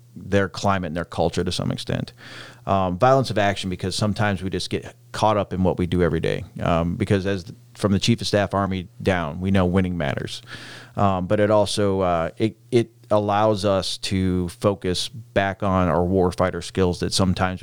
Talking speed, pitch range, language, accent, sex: 195 wpm, 90-105 Hz, English, American, male